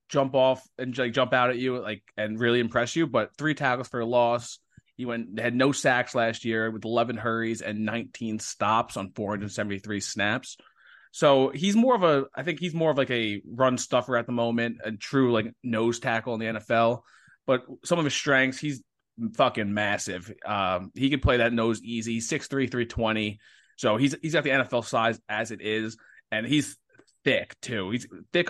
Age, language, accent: 20-39, English, American